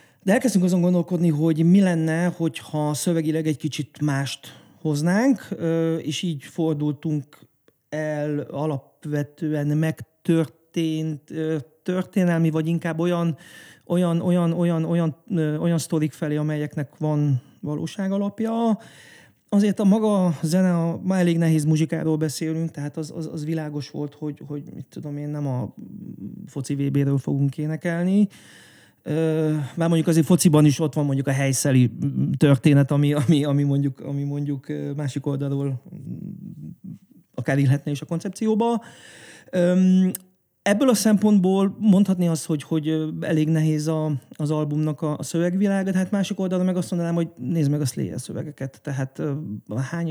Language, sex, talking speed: Hungarian, male, 135 wpm